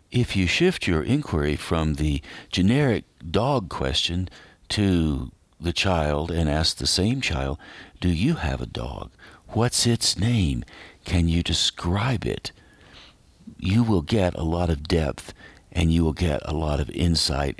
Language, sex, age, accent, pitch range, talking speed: English, male, 50-69, American, 80-105 Hz, 155 wpm